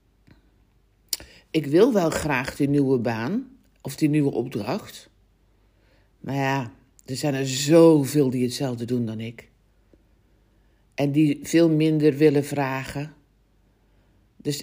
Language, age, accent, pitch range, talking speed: Dutch, 60-79, Dutch, 110-160 Hz, 120 wpm